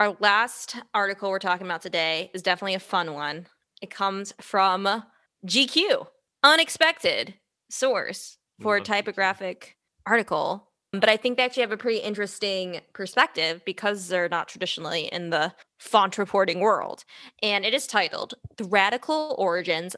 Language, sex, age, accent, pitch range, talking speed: English, female, 20-39, American, 190-250 Hz, 145 wpm